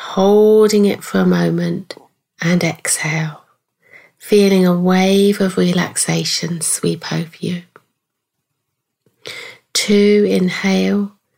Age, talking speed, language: 30-49, 90 wpm, English